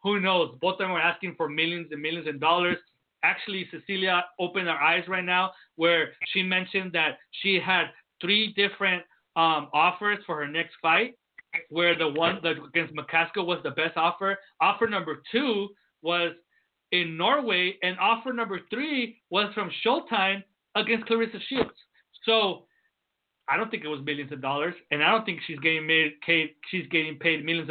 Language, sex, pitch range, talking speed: English, male, 155-190 Hz, 175 wpm